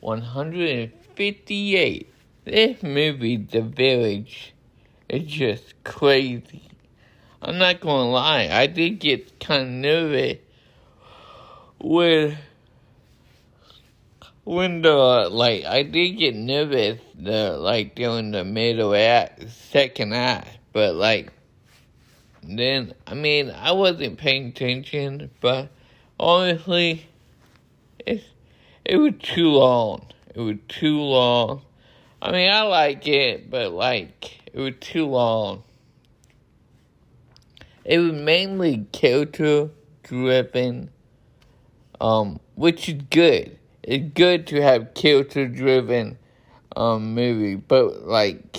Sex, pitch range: male, 120-155 Hz